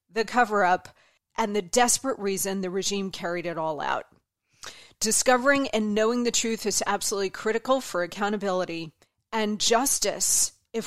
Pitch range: 195-230 Hz